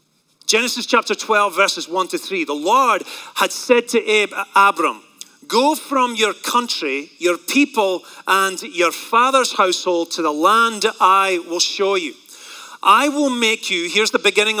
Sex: male